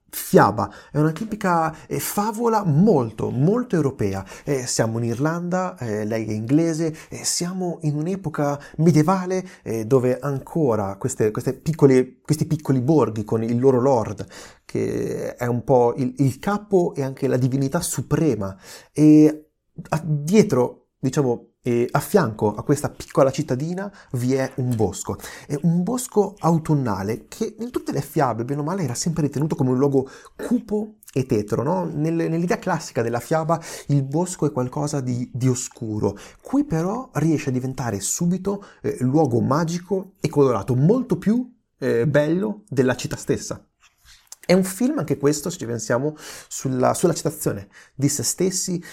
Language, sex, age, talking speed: Italian, male, 30-49, 145 wpm